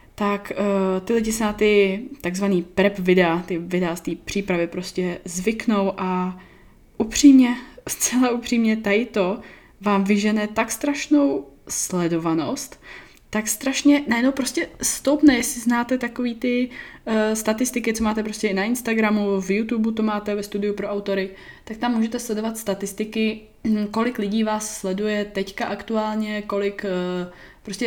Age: 20-39